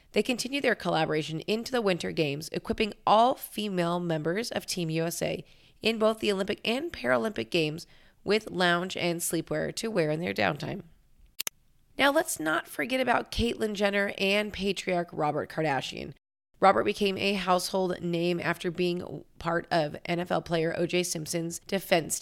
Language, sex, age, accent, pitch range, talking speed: English, female, 30-49, American, 165-200 Hz, 150 wpm